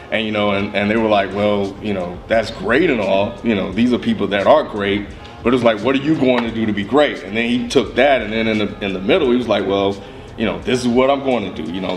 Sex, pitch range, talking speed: male, 100-120 Hz, 310 wpm